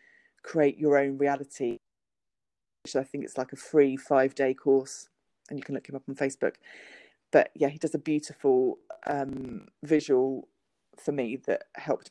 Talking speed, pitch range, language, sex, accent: 165 wpm, 135-150 Hz, English, female, British